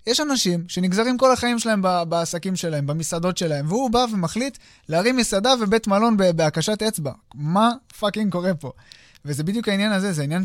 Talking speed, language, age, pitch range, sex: 165 wpm, Hebrew, 20-39, 140-190 Hz, male